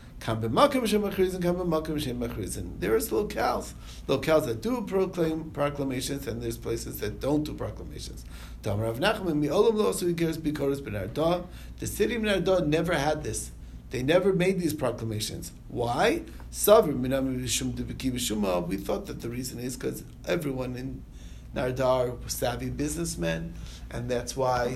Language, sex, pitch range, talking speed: English, male, 115-150 Hz, 105 wpm